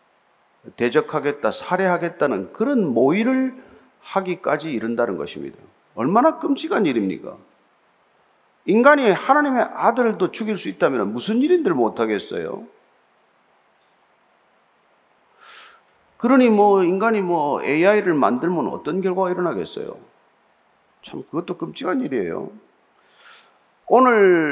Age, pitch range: 40-59, 180-255 Hz